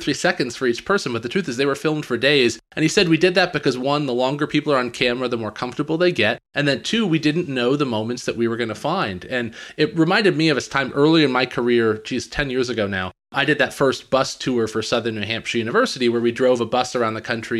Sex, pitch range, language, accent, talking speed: male, 115-150 Hz, English, American, 280 wpm